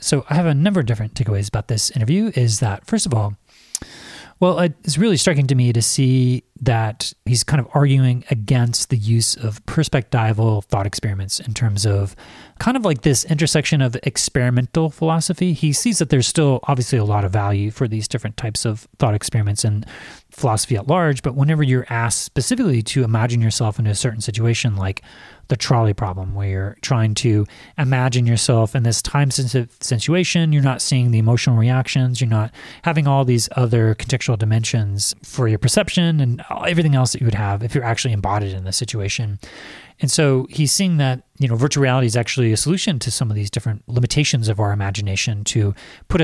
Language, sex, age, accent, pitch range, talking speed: English, male, 30-49, American, 110-140 Hz, 195 wpm